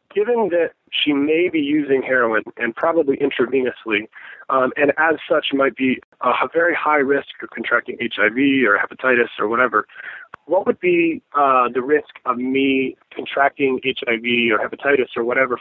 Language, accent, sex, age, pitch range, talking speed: English, American, male, 30-49, 120-160 Hz, 160 wpm